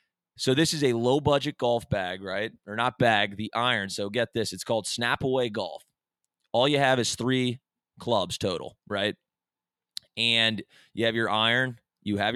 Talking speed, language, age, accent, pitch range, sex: 170 wpm, English, 20-39, American, 105-125 Hz, male